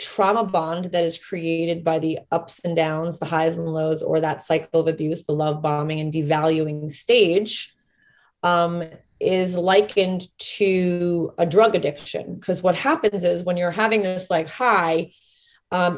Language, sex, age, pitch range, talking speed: English, female, 20-39, 160-195 Hz, 160 wpm